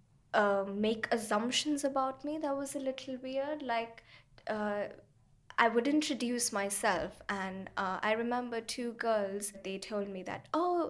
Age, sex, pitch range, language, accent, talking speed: 10-29, female, 195-255 Hz, English, Indian, 150 wpm